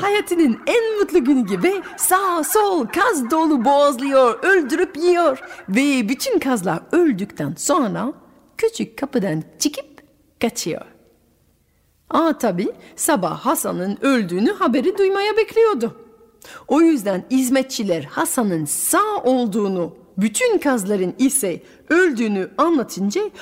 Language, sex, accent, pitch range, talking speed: Turkish, female, native, 205-330 Hz, 100 wpm